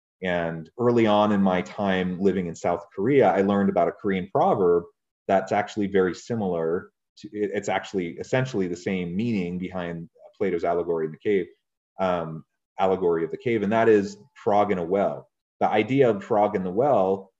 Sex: male